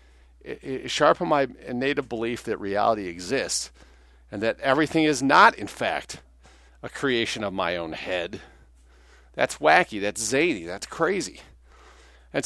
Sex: male